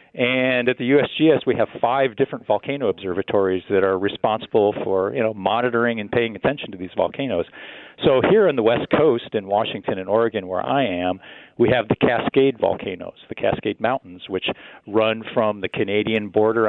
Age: 40-59